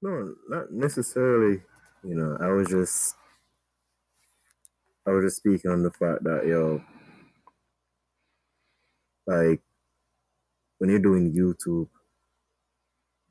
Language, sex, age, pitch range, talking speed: English, male, 20-39, 80-105 Hz, 105 wpm